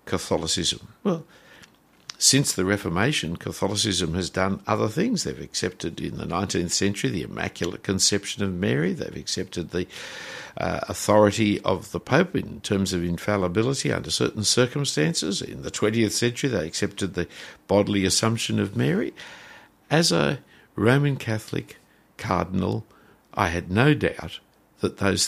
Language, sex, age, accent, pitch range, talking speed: English, male, 60-79, Australian, 90-120 Hz, 140 wpm